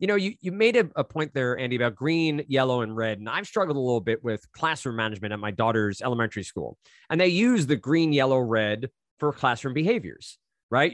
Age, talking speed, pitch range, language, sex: 20-39, 220 wpm, 115-160 Hz, English, male